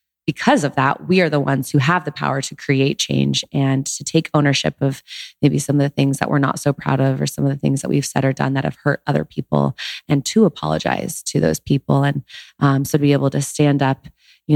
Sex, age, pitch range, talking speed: female, 20-39, 130-145 Hz, 250 wpm